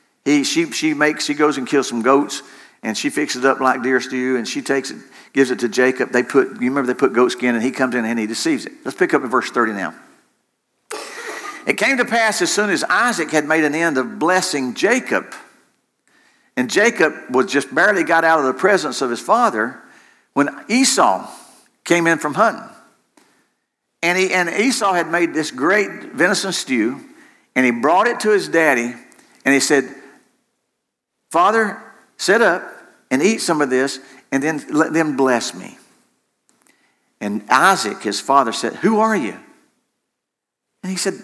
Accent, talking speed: American, 185 wpm